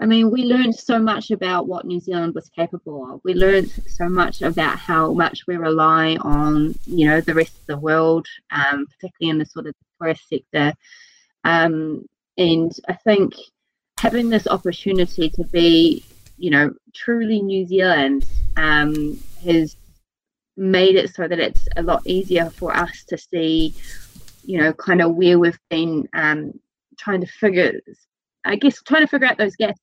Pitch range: 160-200 Hz